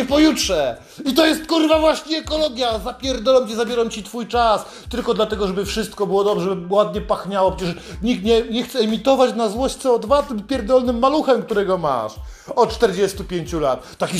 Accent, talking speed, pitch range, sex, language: native, 170 wpm, 180-240 Hz, male, Polish